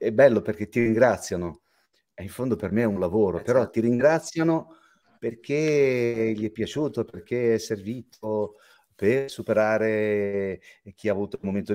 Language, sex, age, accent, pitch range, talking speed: Italian, male, 40-59, native, 90-115 Hz, 155 wpm